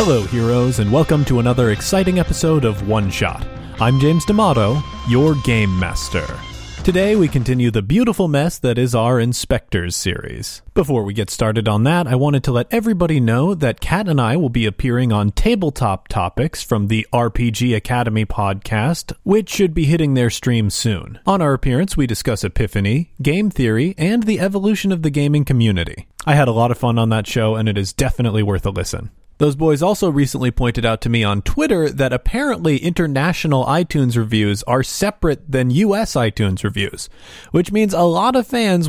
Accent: American